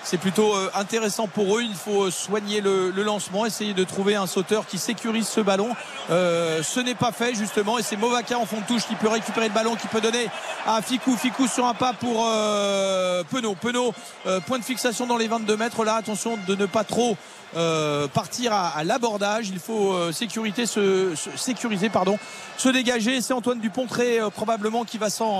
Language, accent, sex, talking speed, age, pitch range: French, French, male, 210 wpm, 40-59, 200-235 Hz